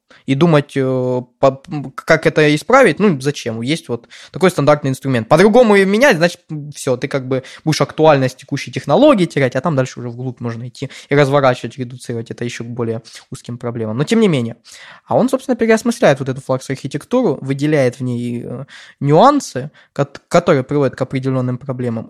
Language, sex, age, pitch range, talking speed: Russian, male, 20-39, 130-175 Hz, 160 wpm